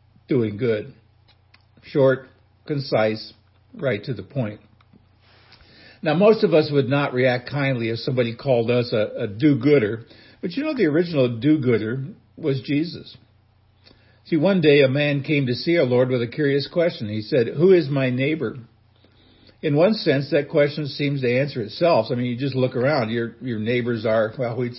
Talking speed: 175 wpm